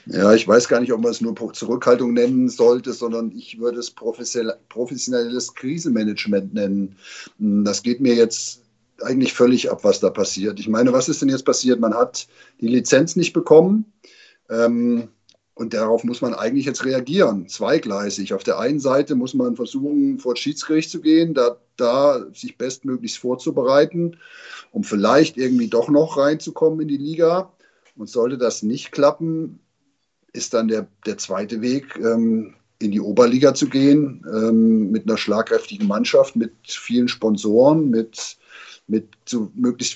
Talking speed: 155 wpm